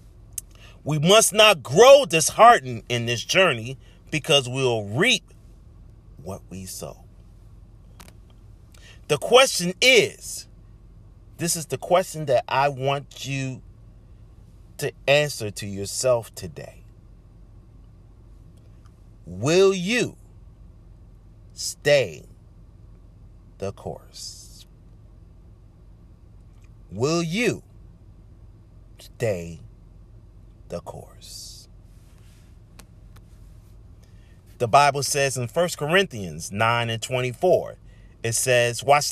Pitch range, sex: 100-130 Hz, male